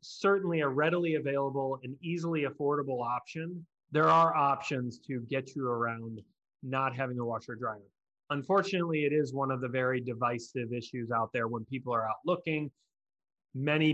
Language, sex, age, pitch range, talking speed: English, male, 30-49, 125-160 Hz, 160 wpm